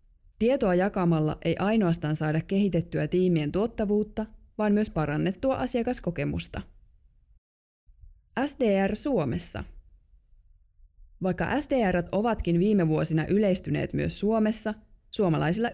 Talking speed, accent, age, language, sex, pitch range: 90 wpm, native, 20-39, Finnish, female, 160-215 Hz